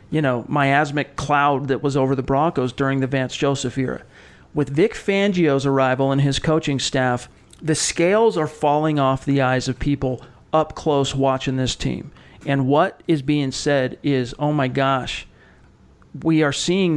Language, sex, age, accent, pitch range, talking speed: English, male, 40-59, American, 135-155 Hz, 170 wpm